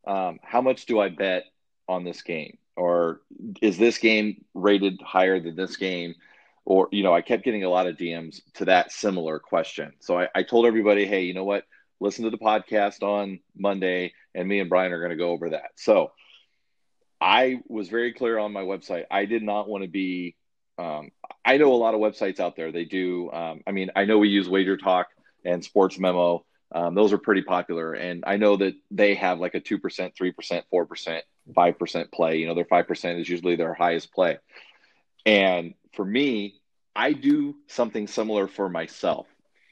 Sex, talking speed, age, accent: male, 195 wpm, 30-49, American